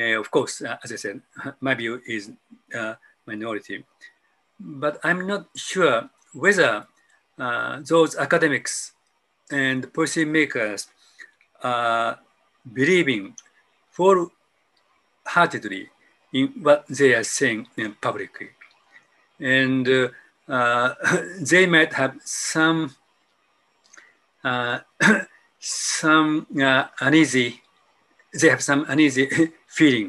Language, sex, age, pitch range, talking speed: English, male, 50-69, 130-165 Hz, 95 wpm